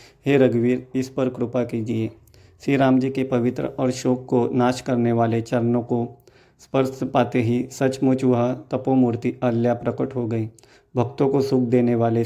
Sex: male